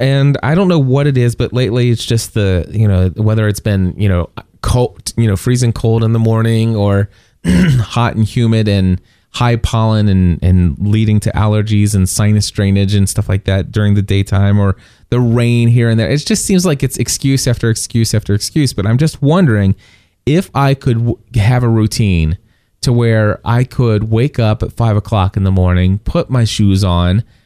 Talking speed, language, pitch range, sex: 200 wpm, English, 105-125 Hz, male